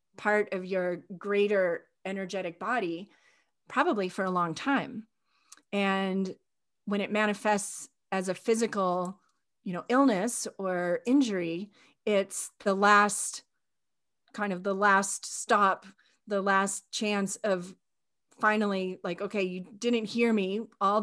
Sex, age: female, 30-49